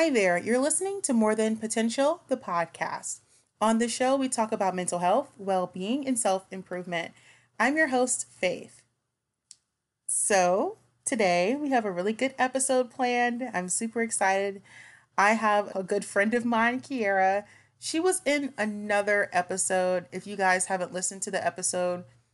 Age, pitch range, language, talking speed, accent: 30-49, 175-245 Hz, English, 155 wpm, American